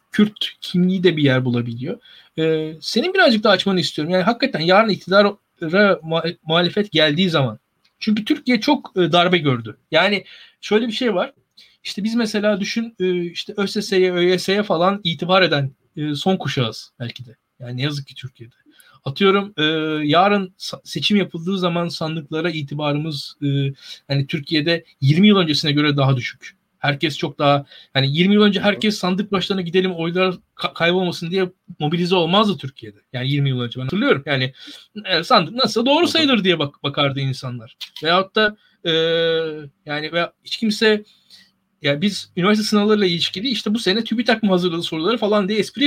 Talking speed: 155 wpm